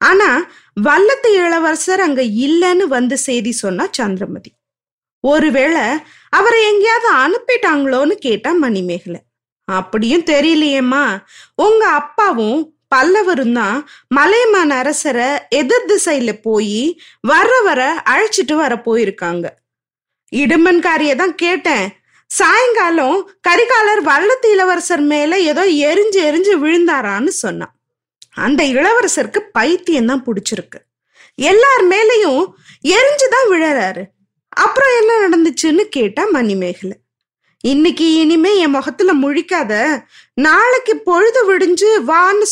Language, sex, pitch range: Tamil, female, 260-390 Hz